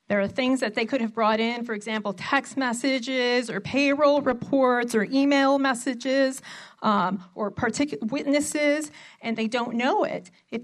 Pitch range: 220-280 Hz